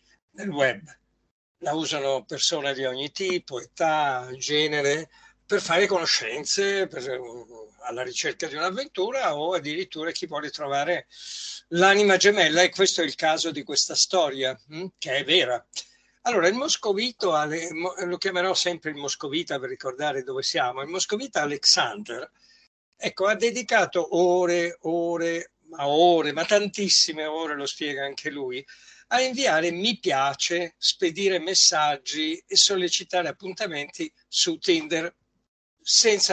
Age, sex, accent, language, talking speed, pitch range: 60-79, male, native, Italian, 125 wpm, 150-195 Hz